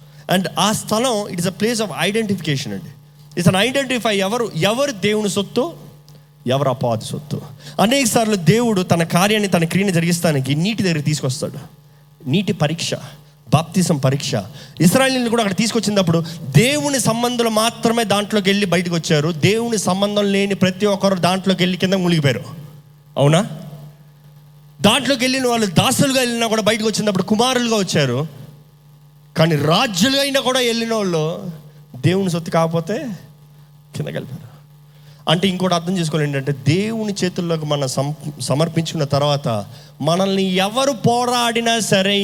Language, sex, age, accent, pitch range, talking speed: Telugu, male, 30-49, native, 150-210 Hz, 130 wpm